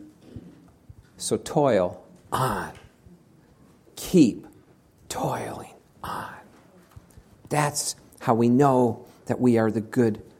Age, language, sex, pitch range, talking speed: 50-69, English, male, 115-150 Hz, 85 wpm